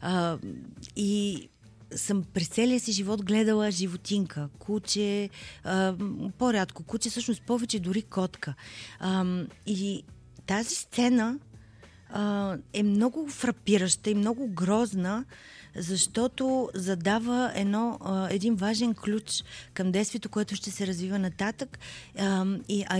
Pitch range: 185-230 Hz